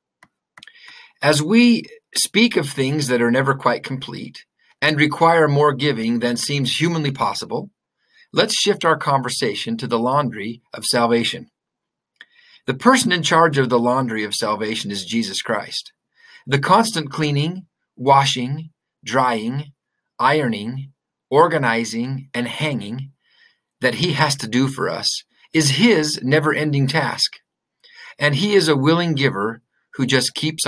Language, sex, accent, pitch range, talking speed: English, male, American, 125-170 Hz, 135 wpm